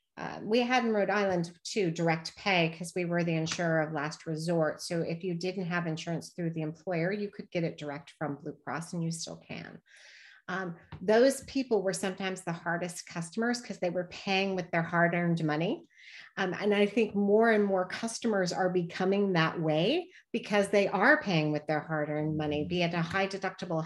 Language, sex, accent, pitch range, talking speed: English, female, American, 160-190 Hz, 200 wpm